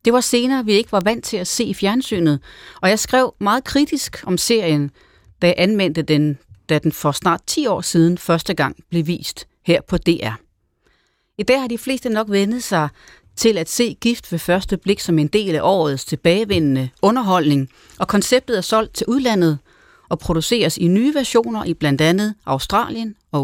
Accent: native